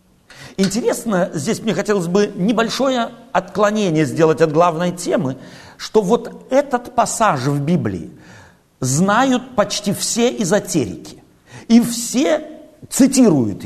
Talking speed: 105 wpm